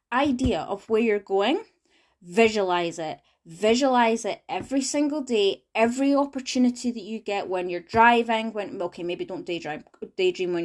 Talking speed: 150 wpm